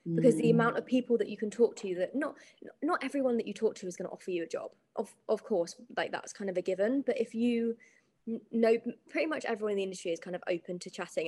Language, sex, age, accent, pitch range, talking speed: English, female, 20-39, British, 180-230 Hz, 265 wpm